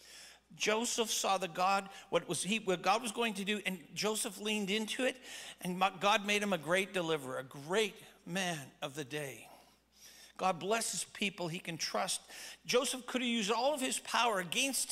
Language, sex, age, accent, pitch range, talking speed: English, male, 50-69, American, 180-230 Hz, 185 wpm